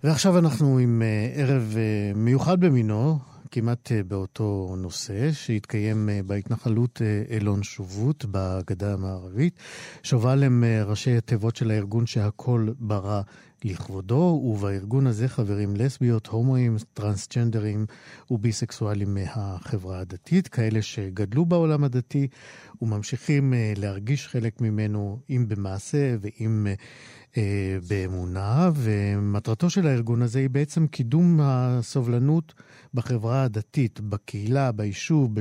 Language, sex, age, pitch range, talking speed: Hebrew, male, 50-69, 105-135 Hz, 110 wpm